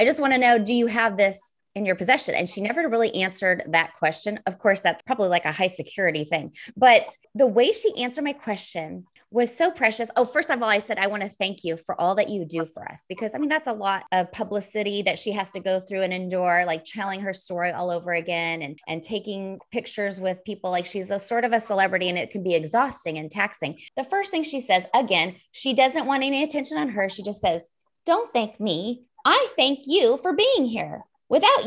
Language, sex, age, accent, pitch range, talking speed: English, female, 20-39, American, 190-275 Hz, 235 wpm